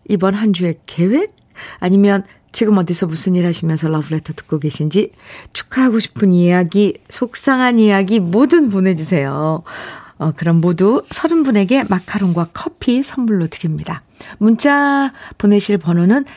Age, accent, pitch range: 50-69, native, 160-225 Hz